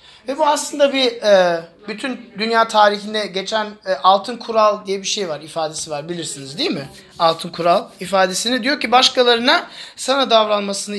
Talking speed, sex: 145 wpm, male